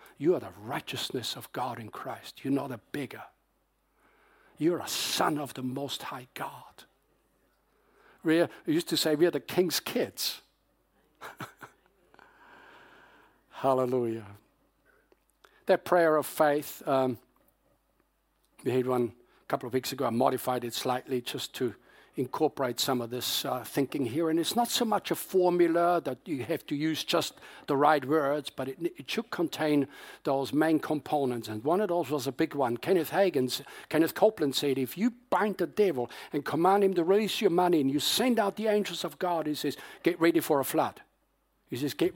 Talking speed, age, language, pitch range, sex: 175 wpm, 60-79, English, 130-175 Hz, male